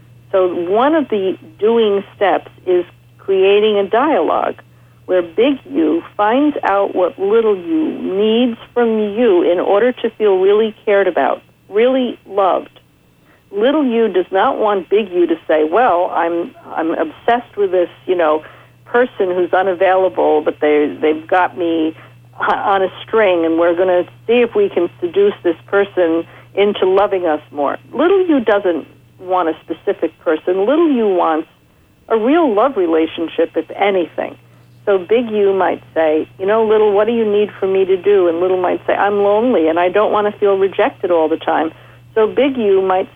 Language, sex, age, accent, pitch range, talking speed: English, female, 50-69, American, 175-225 Hz, 175 wpm